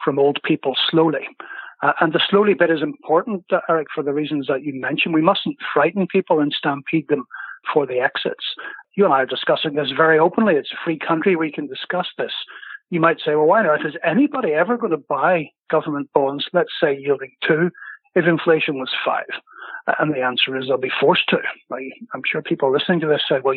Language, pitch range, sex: English, 145-185 Hz, male